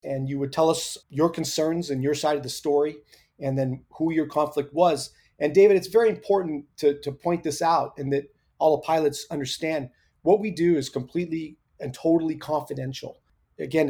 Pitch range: 140-165 Hz